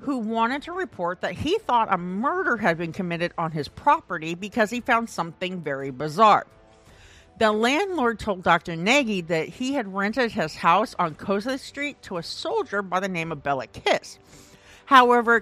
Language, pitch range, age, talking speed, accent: English, 175-255 Hz, 50-69, 175 wpm, American